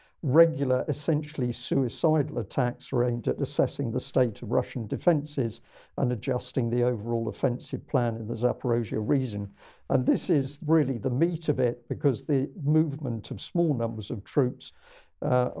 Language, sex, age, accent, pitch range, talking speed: English, male, 50-69, British, 120-145 Hz, 155 wpm